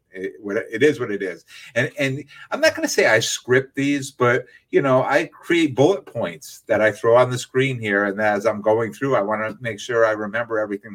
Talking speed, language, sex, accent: 235 wpm, English, male, American